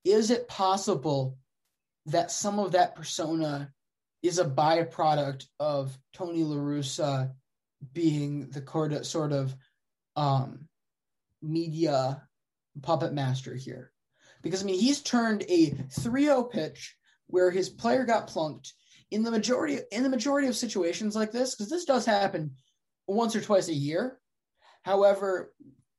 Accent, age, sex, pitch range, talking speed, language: American, 20-39, male, 145-195 Hz, 130 wpm, English